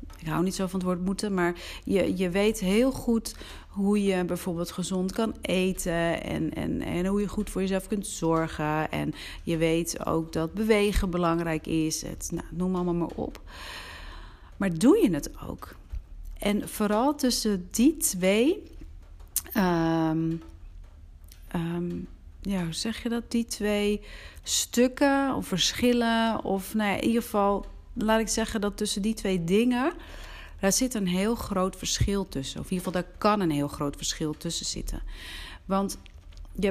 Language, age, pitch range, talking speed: Dutch, 40-59, 160-205 Hz, 155 wpm